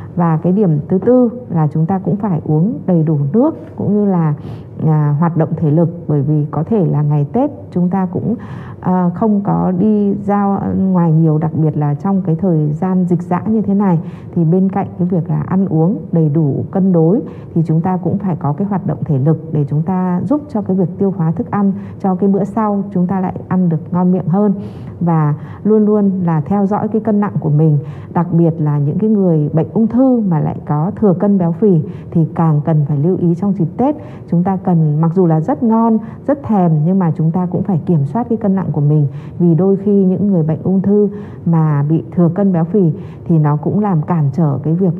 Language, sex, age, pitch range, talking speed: Vietnamese, female, 20-39, 155-195 Hz, 235 wpm